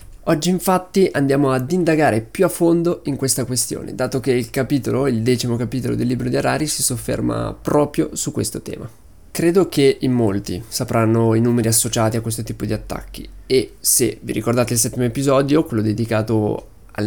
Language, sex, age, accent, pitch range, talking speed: Italian, male, 20-39, native, 110-140 Hz, 180 wpm